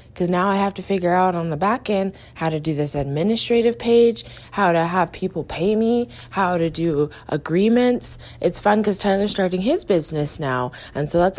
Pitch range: 165-215 Hz